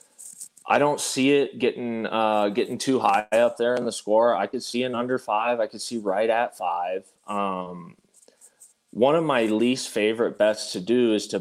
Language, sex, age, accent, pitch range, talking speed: English, male, 20-39, American, 95-105 Hz, 195 wpm